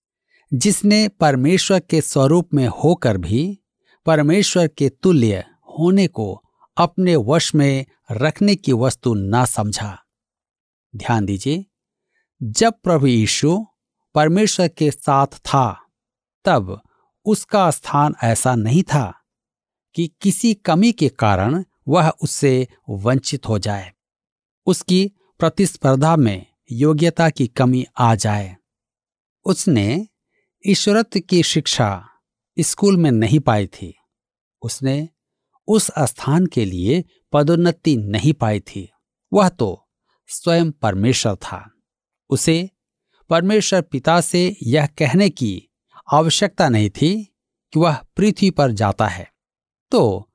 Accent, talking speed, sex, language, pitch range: native, 110 wpm, male, Hindi, 115-180 Hz